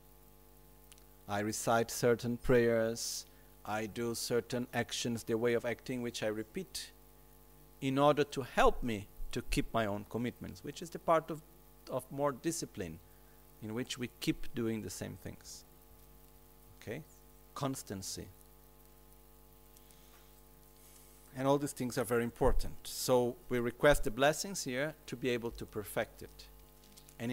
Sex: male